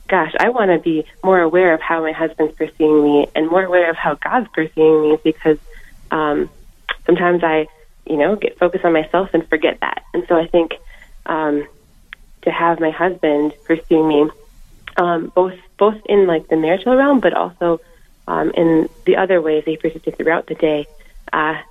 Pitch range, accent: 160-185 Hz, American